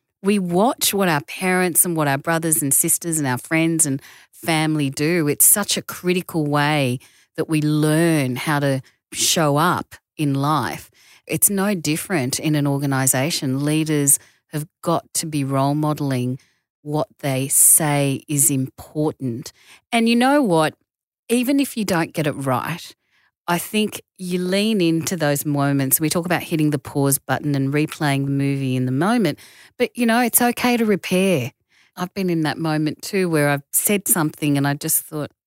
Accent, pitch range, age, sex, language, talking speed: Australian, 140-175 Hz, 40-59, female, English, 175 wpm